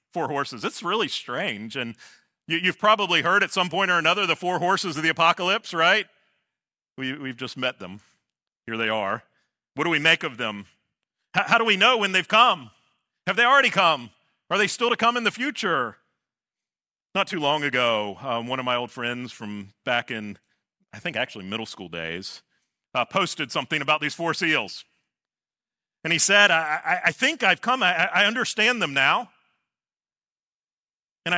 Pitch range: 150-220 Hz